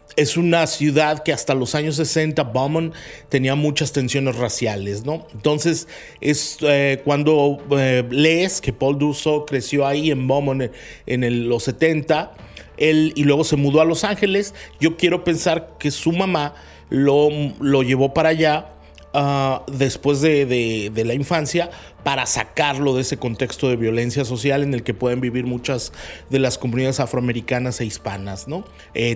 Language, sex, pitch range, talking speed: Spanish, male, 125-160 Hz, 165 wpm